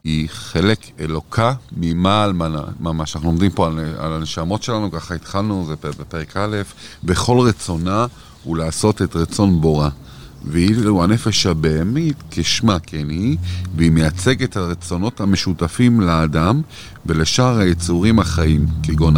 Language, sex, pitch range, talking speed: Hebrew, male, 85-120 Hz, 120 wpm